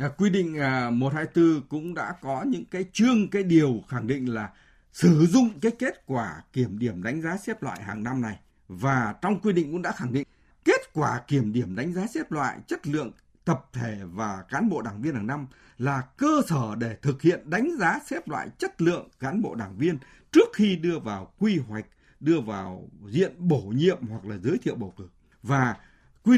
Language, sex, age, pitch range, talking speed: Vietnamese, male, 60-79, 125-195 Hz, 205 wpm